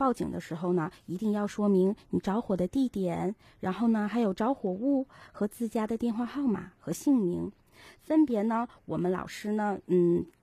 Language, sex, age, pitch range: Chinese, female, 20-39, 185-230 Hz